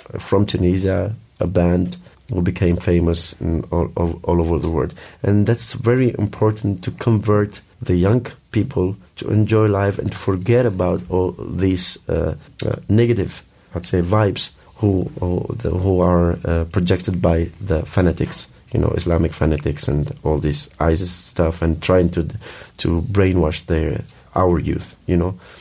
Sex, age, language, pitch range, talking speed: male, 40-59, English, 85-105 Hz, 150 wpm